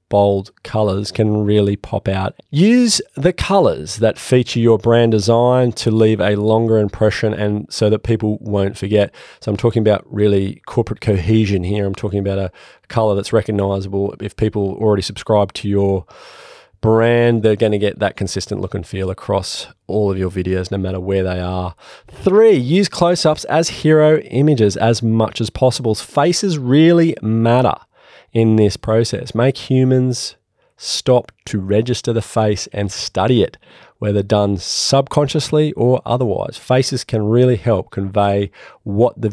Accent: Australian